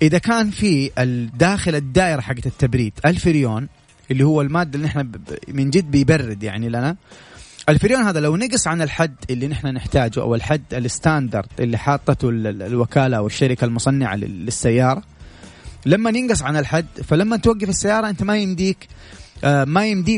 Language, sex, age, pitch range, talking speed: Arabic, male, 30-49, 125-160 Hz, 145 wpm